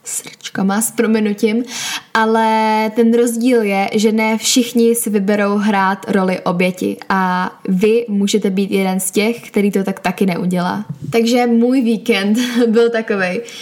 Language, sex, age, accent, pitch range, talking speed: Czech, female, 10-29, native, 195-230 Hz, 140 wpm